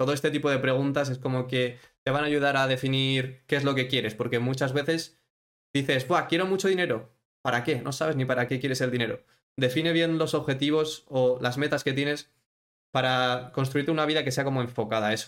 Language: Spanish